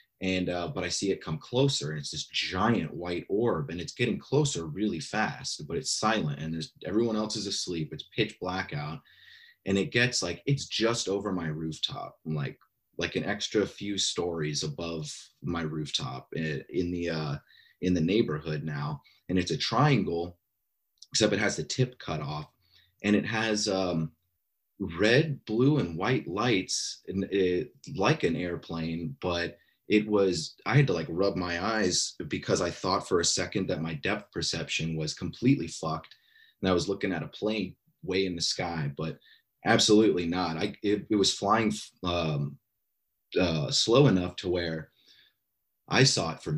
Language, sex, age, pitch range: English, male, 30-49, 80-105 Hz